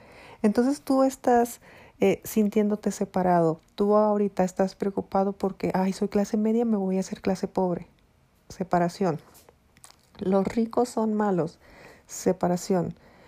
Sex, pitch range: female, 180-210 Hz